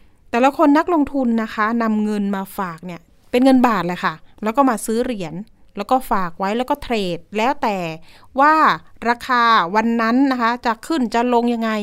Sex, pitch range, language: female, 210-265 Hz, Thai